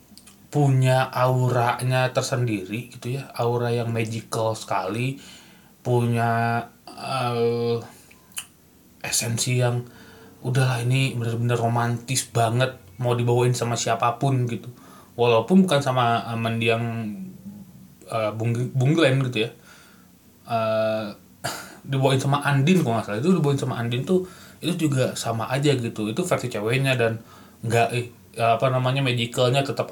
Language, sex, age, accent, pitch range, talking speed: Indonesian, male, 20-39, native, 110-130 Hz, 115 wpm